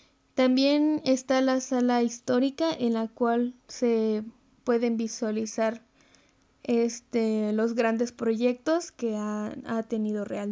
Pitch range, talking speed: 235-280 Hz, 110 wpm